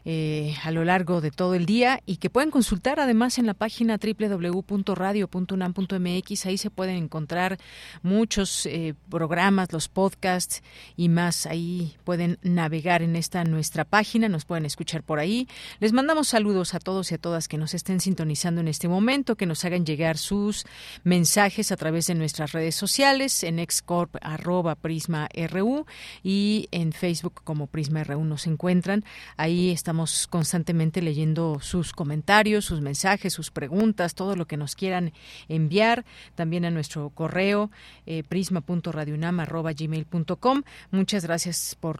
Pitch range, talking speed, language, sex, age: 160-195 Hz, 145 wpm, Spanish, female, 40-59